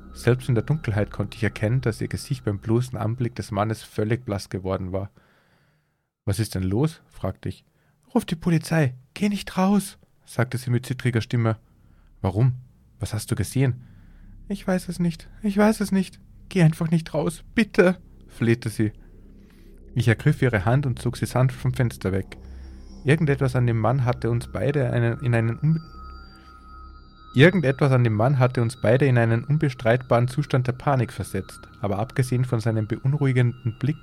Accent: German